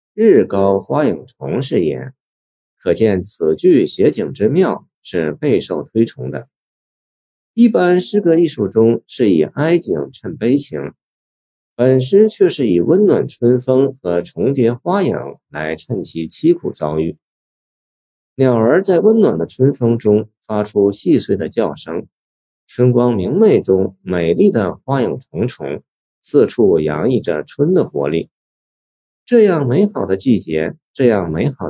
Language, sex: Chinese, male